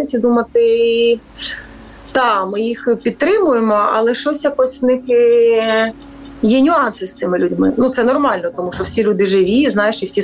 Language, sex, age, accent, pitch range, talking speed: Ukrainian, female, 30-49, native, 200-255 Hz, 165 wpm